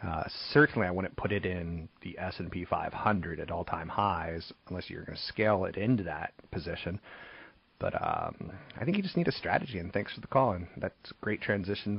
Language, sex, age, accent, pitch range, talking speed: English, male, 30-49, American, 90-115 Hz, 220 wpm